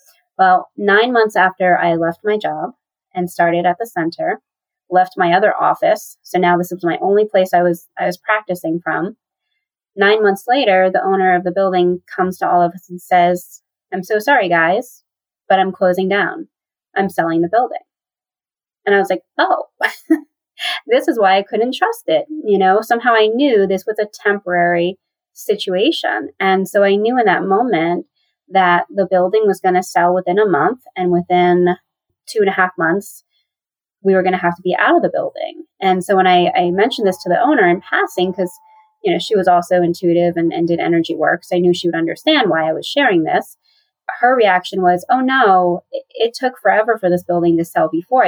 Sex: female